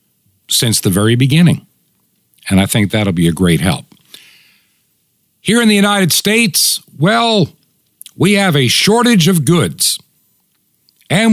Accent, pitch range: American, 130-175 Hz